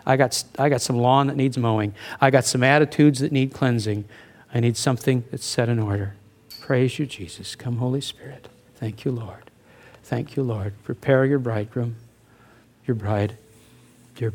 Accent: American